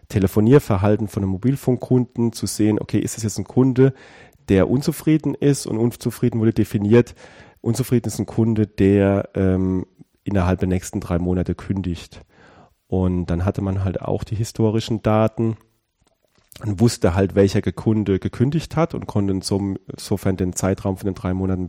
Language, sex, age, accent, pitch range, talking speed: German, male, 30-49, German, 90-110 Hz, 155 wpm